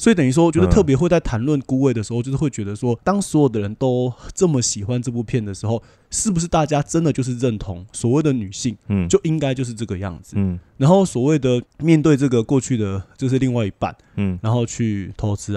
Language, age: Chinese, 20-39